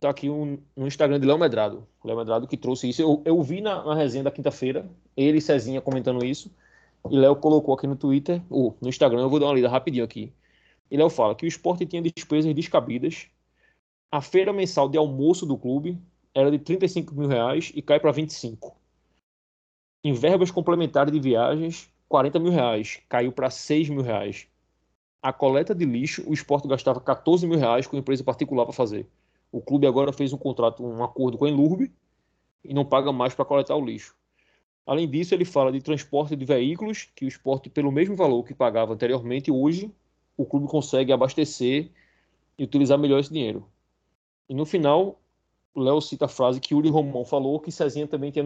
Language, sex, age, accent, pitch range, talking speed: Portuguese, male, 20-39, Brazilian, 130-160 Hz, 195 wpm